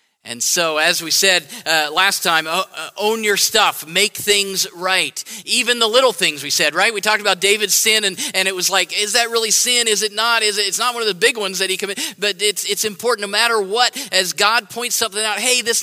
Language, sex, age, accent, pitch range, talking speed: English, male, 40-59, American, 175-220 Hz, 245 wpm